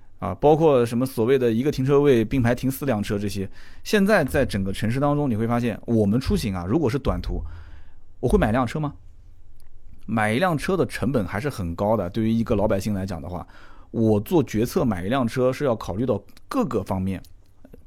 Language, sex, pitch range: Chinese, male, 100-140 Hz